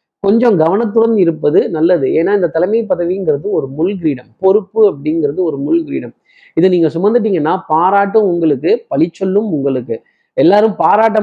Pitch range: 160-205 Hz